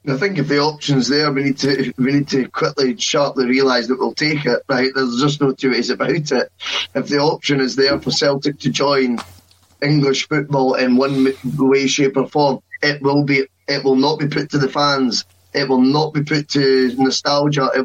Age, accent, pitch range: 10-29, British, 130-150 Hz